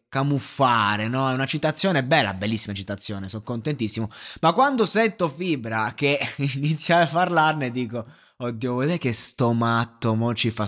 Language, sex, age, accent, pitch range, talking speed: Italian, male, 20-39, native, 115-160 Hz, 150 wpm